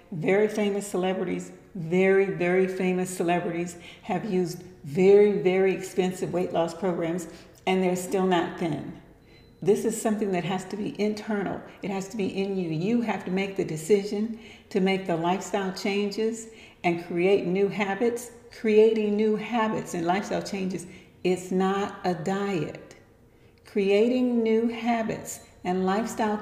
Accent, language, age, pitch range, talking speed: American, English, 60-79, 185-225 Hz, 145 wpm